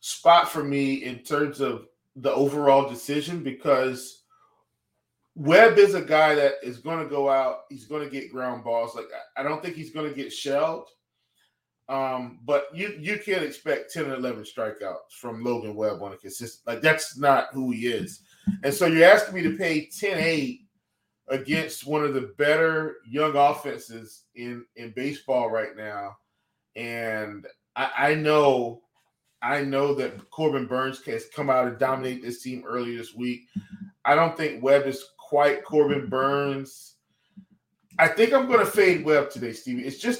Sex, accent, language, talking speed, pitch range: male, American, English, 170 wpm, 125-160 Hz